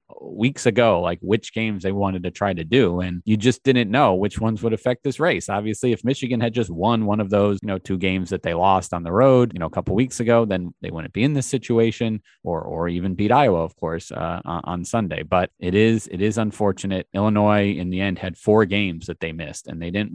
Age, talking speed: 30-49, 250 wpm